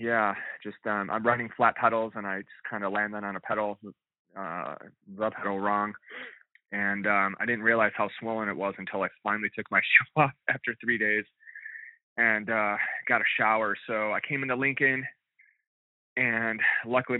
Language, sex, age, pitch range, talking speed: English, male, 20-39, 100-120 Hz, 180 wpm